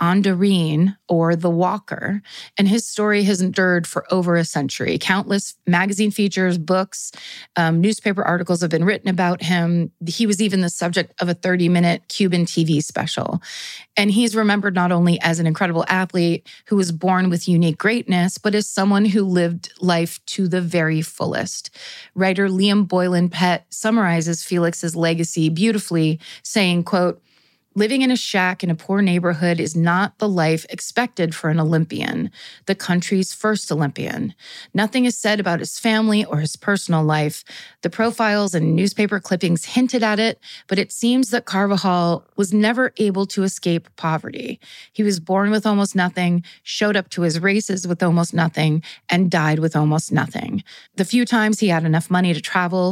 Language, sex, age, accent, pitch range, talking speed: English, female, 30-49, American, 170-200 Hz, 170 wpm